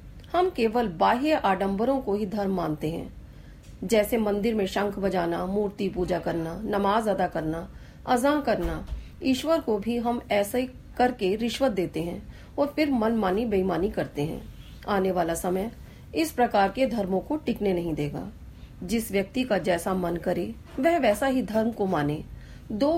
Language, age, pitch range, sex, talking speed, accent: Hindi, 40-59, 185-240 Hz, female, 160 wpm, native